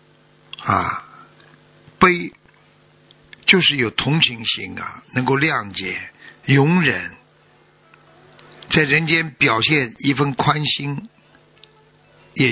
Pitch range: 115-155 Hz